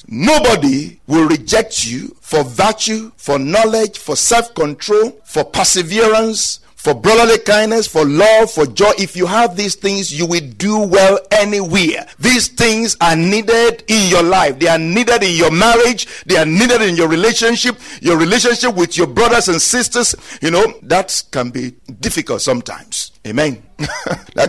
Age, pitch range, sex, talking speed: 50-69, 150-220 Hz, male, 155 wpm